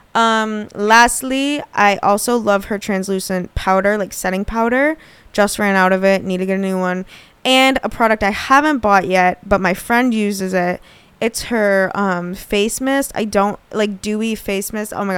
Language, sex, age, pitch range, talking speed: English, female, 20-39, 195-230 Hz, 185 wpm